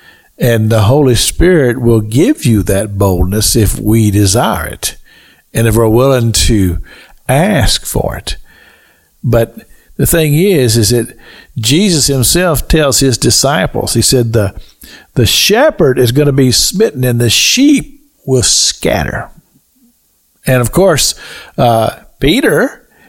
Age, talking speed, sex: 50-69, 135 wpm, male